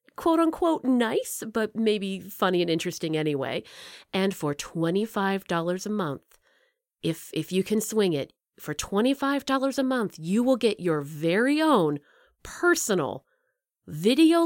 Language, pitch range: English, 175-270 Hz